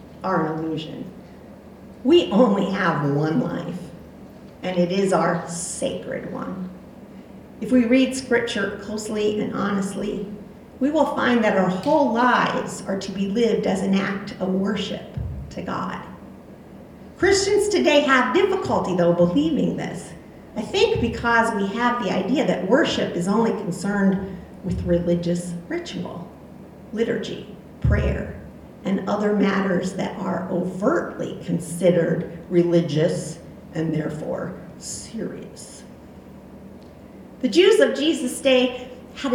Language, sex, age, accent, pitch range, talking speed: English, female, 50-69, American, 185-250 Hz, 120 wpm